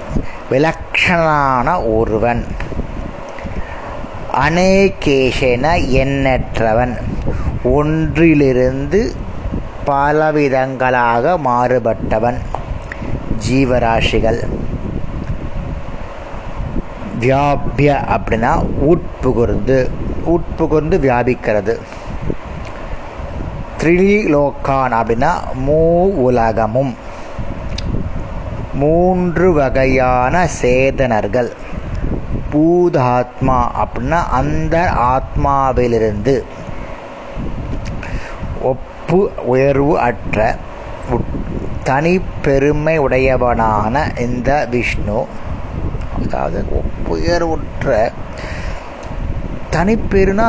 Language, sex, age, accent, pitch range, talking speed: Tamil, male, 30-49, native, 115-150 Hz, 40 wpm